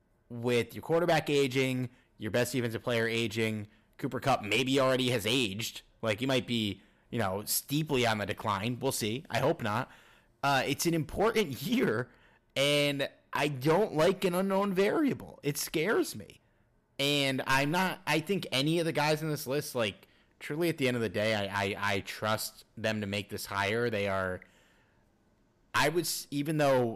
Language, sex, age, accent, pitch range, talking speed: English, male, 30-49, American, 105-145 Hz, 175 wpm